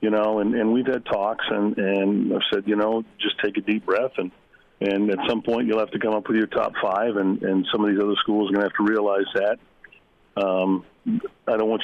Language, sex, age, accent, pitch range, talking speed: English, male, 40-59, American, 105-120 Hz, 255 wpm